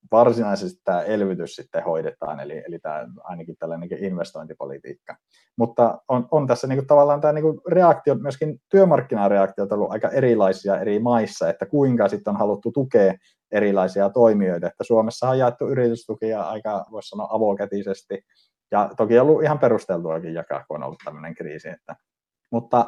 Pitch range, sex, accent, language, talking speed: 95-125 Hz, male, native, Finnish, 155 wpm